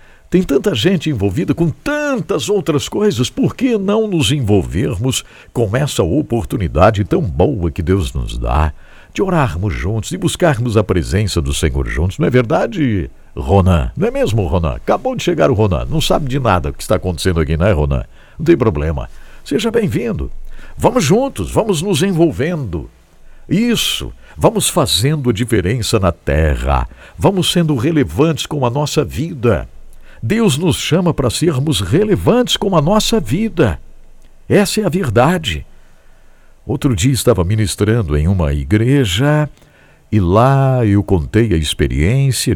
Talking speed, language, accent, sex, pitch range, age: 150 wpm, English, Brazilian, male, 90-150 Hz, 60-79